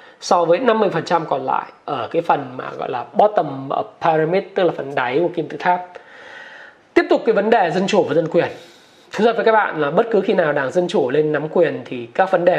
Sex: male